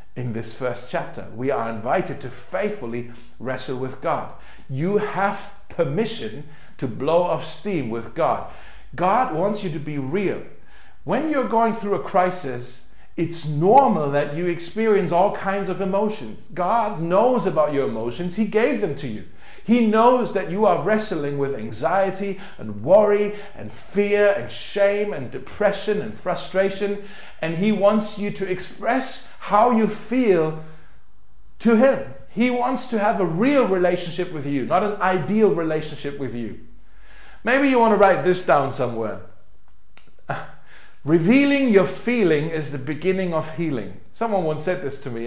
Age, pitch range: 50-69, 140-210 Hz